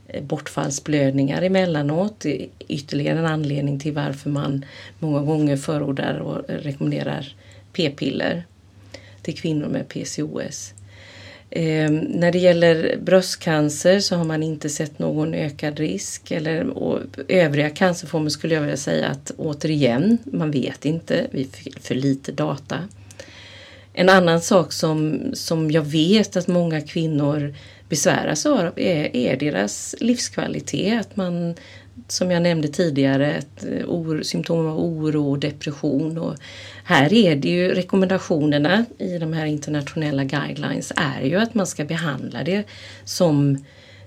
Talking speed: 130 wpm